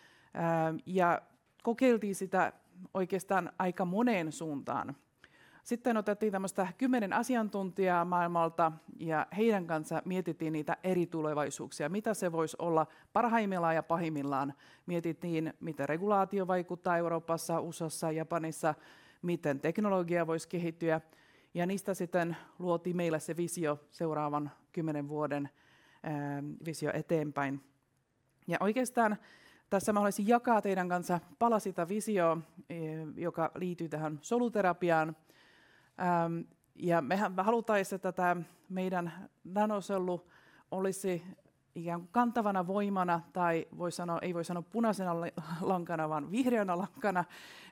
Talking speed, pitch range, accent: 110 wpm, 160-195 Hz, native